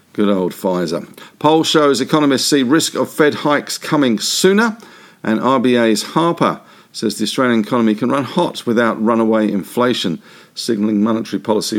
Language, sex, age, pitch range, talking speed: English, male, 50-69, 110-155 Hz, 150 wpm